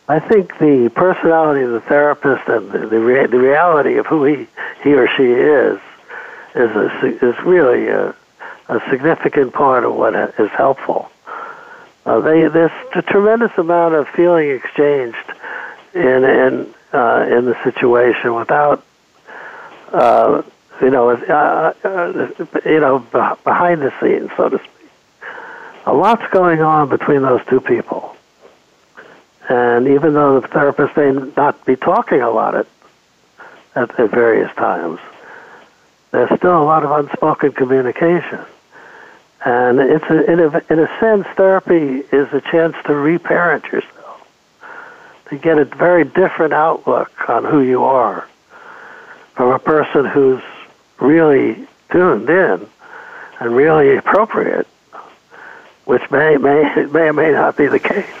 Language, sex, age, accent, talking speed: English, male, 60-79, American, 140 wpm